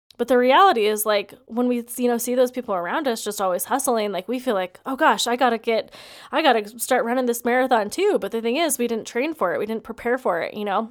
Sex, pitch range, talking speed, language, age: female, 205-245 Hz, 280 wpm, English, 20-39